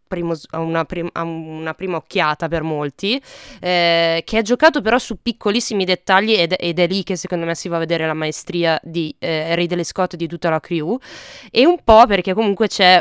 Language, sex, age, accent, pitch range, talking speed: Italian, female, 20-39, native, 170-210 Hz, 210 wpm